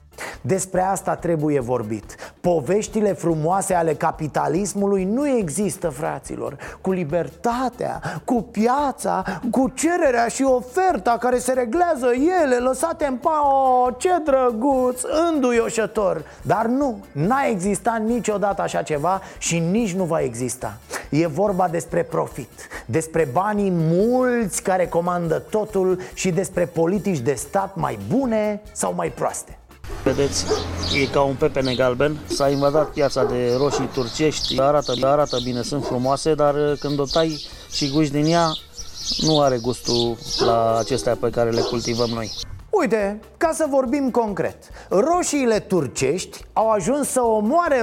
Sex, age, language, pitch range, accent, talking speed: male, 30-49, Romanian, 155-235 Hz, native, 135 wpm